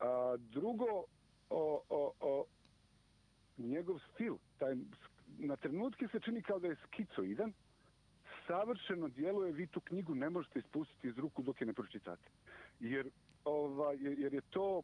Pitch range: 140-210 Hz